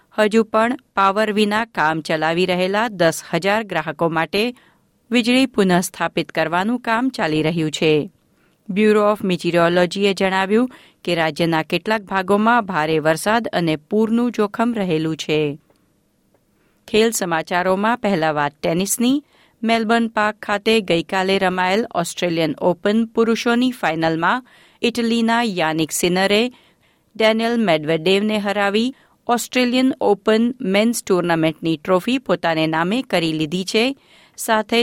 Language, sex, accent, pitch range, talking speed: Gujarati, female, native, 175-230 Hz, 110 wpm